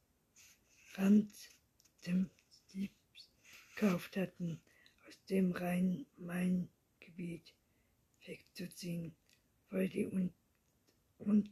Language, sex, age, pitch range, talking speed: German, female, 60-79, 180-205 Hz, 65 wpm